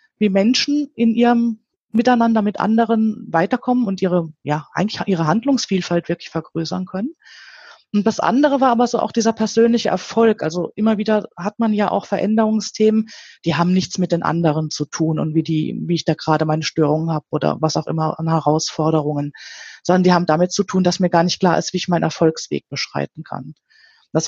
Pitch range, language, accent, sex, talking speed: 165-215 Hz, German, German, female, 195 wpm